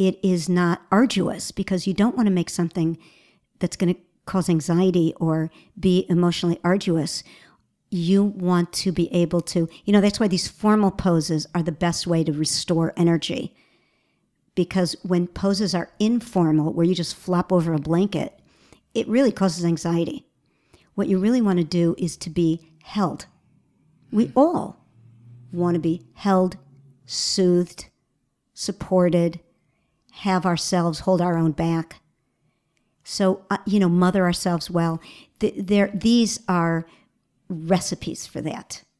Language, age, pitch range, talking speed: English, 50-69, 170-195 Hz, 145 wpm